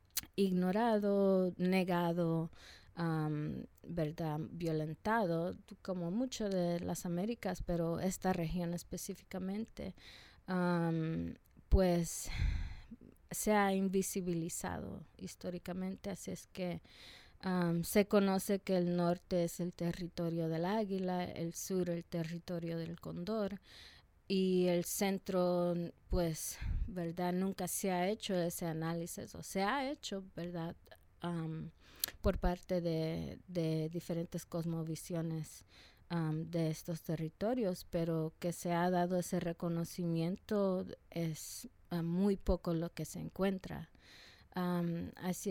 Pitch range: 165-190 Hz